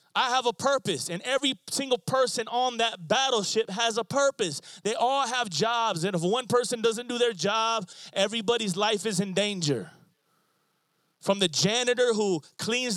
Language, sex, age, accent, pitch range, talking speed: English, male, 20-39, American, 160-225 Hz, 165 wpm